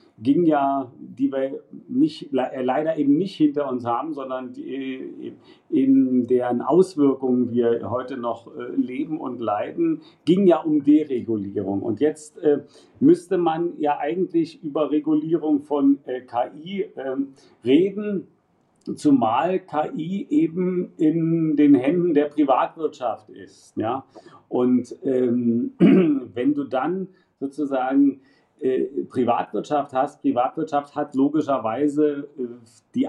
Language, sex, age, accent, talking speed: German, male, 50-69, German, 100 wpm